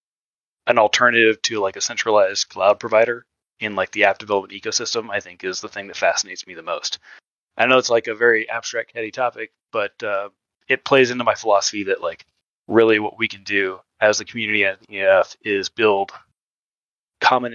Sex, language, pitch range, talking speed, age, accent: male, English, 100-120 Hz, 190 wpm, 30-49, American